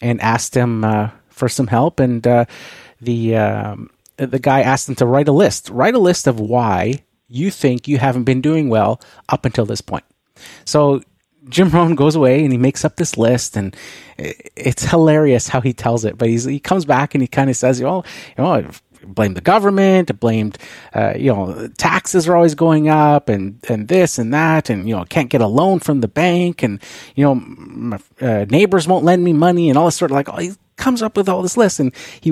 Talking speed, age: 220 wpm, 30-49